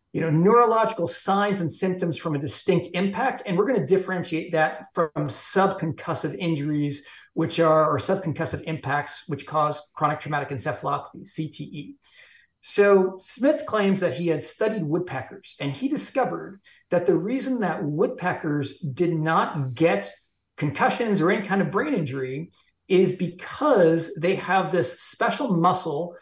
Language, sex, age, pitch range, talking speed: English, male, 50-69, 155-200 Hz, 145 wpm